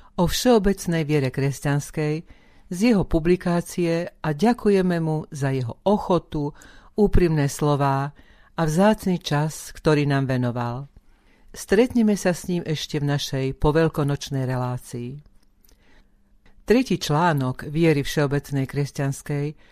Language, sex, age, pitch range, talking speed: Slovak, female, 50-69, 140-165 Hz, 105 wpm